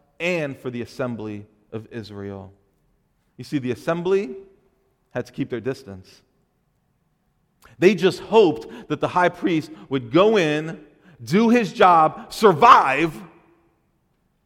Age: 40-59